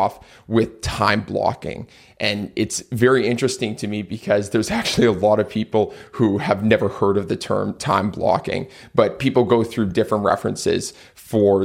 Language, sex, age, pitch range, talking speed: English, male, 20-39, 105-125 Hz, 165 wpm